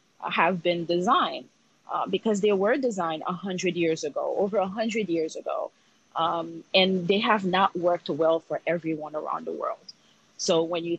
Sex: female